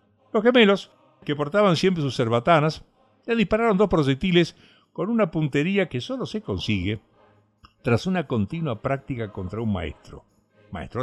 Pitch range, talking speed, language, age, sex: 105-165 Hz, 140 wpm, Spanish, 50-69, male